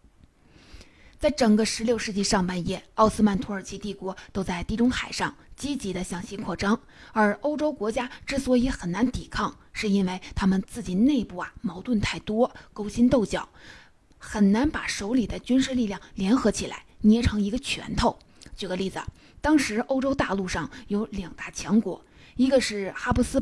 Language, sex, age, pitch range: Chinese, female, 20-39, 195-250 Hz